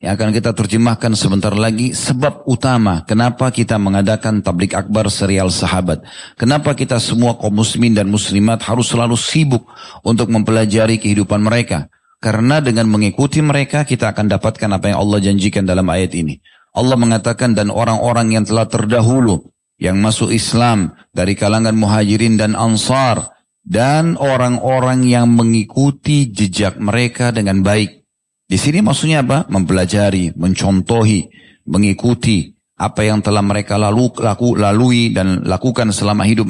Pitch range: 105-120 Hz